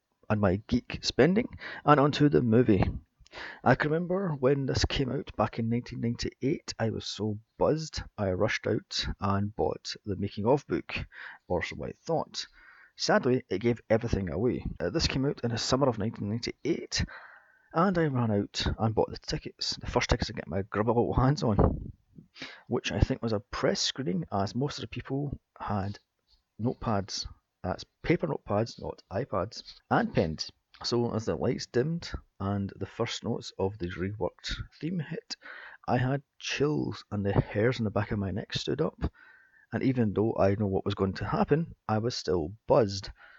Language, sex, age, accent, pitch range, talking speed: English, male, 30-49, British, 100-125 Hz, 180 wpm